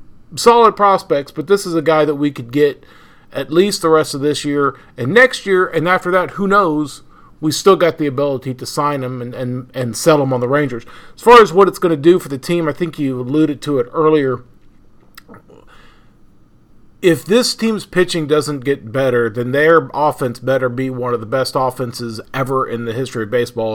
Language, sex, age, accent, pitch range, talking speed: English, male, 40-59, American, 125-160 Hz, 205 wpm